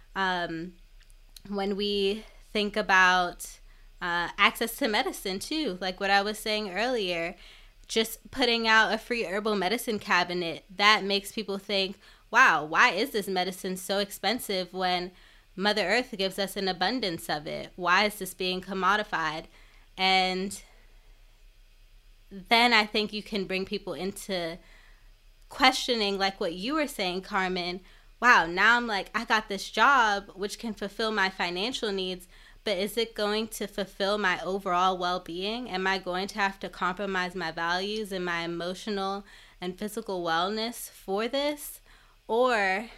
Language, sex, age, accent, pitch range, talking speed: English, female, 20-39, American, 180-210 Hz, 150 wpm